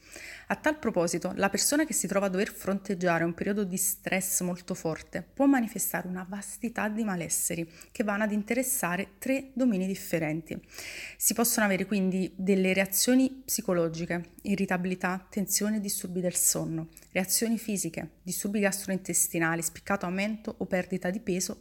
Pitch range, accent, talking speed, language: 180-215 Hz, native, 145 wpm, Italian